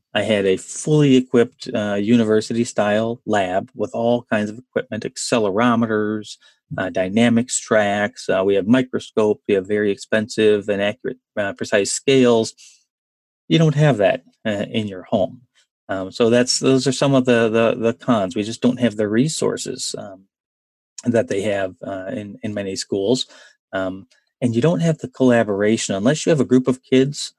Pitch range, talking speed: 105-125 Hz, 175 wpm